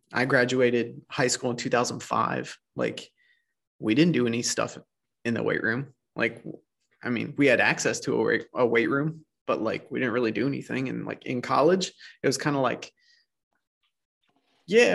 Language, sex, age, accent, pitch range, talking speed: English, male, 20-39, American, 125-150 Hz, 175 wpm